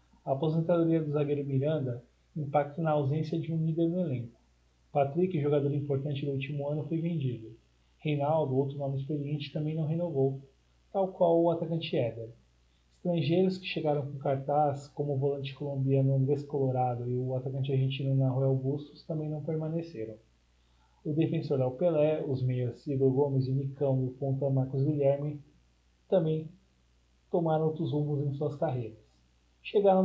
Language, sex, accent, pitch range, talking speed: Portuguese, male, Brazilian, 135-160 Hz, 150 wpm